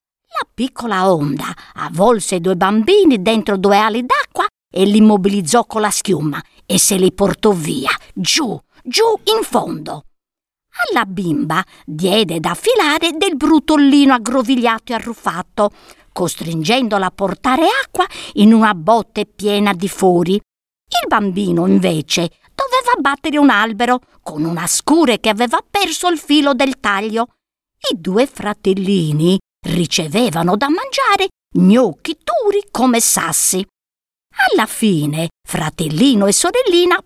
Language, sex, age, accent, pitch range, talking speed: Italian, female, 50-69, native, 185-280 Hz, 125 wpm